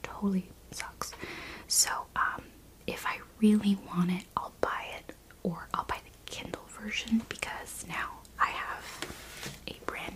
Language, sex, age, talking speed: English, female, 30-49, 150 wpm